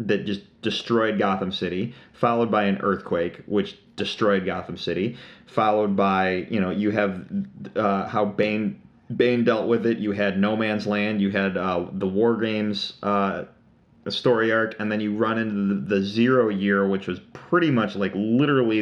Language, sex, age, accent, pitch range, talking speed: English, male, 30-49, American, 100-115 Hz, 175 wpm